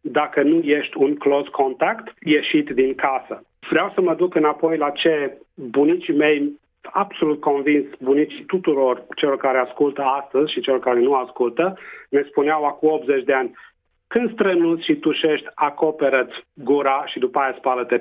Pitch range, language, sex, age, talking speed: 135-175 Hz, Romanian, male, 40-59, 155 wpm